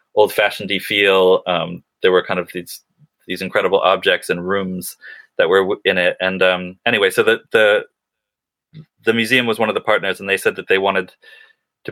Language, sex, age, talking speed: English, male, 20-39, 185 wpm